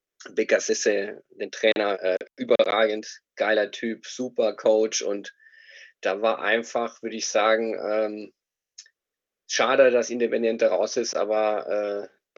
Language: German